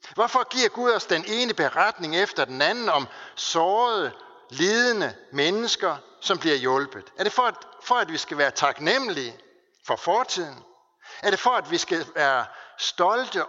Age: 60-79